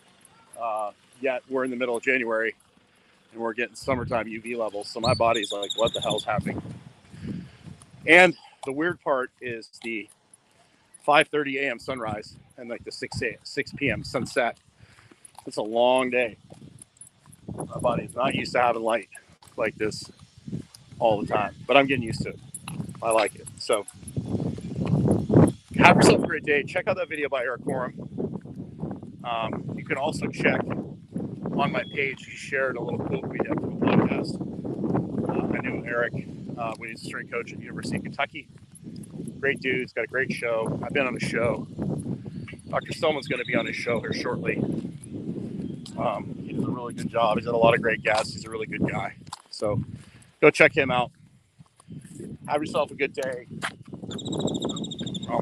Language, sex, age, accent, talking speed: English, male, 40-59, American, 175 wpm